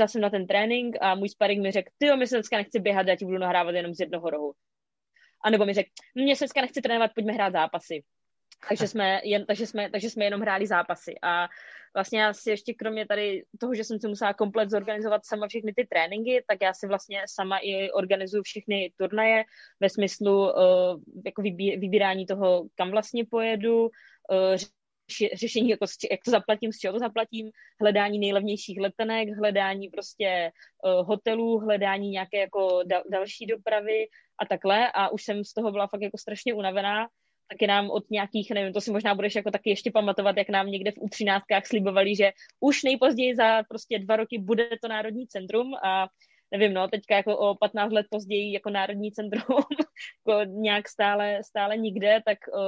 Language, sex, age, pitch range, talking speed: Czech, female, 20-39, 195-220 Hz, 185 wpm